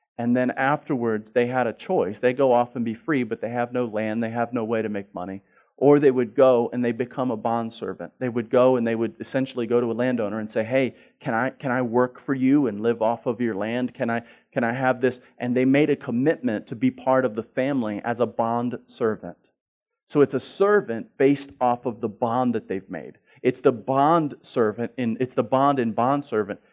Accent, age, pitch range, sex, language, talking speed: American, 40-59, 115-135 Hz, male, English, 240 wpm